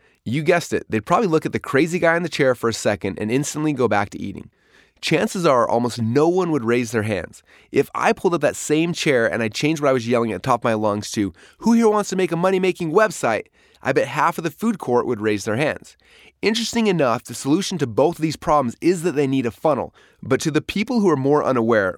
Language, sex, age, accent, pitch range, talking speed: English, male, 30-49, American, 115-155 Hz, 255 wpm